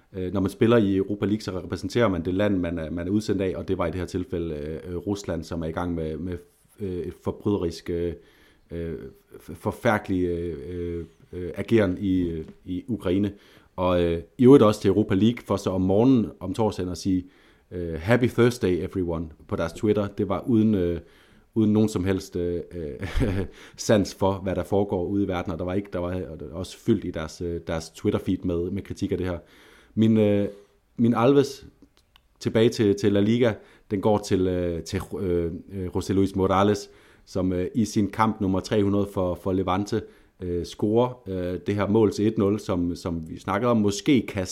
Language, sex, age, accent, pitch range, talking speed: Danish, male, 30-49, native, 90-105 Hz, 175 wpm